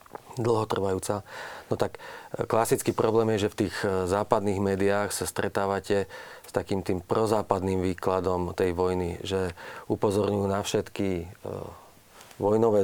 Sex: male